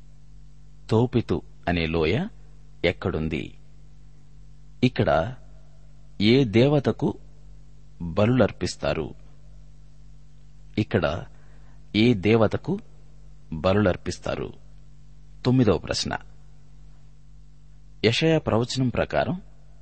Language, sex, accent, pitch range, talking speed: Telugu, male, native, 95-130 Hz, 35 wpm